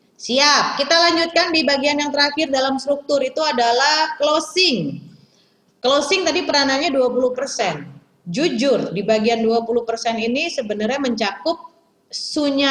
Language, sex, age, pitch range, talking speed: Indonesian, female, 30-49, 205-290 Hz, 115 wpm